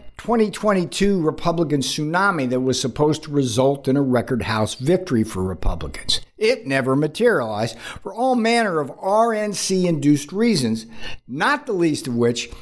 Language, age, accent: English, 60-79, American